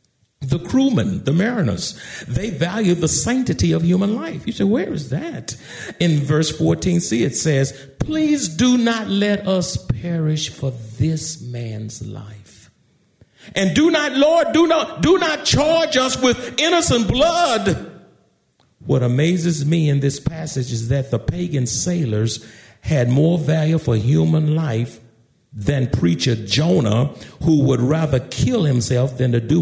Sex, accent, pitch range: male, American, 120-185 Hz